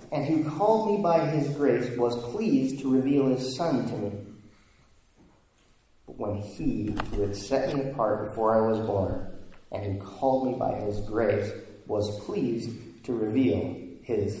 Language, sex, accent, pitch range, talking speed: English, male, American, 110-135 Hz, 165 wpm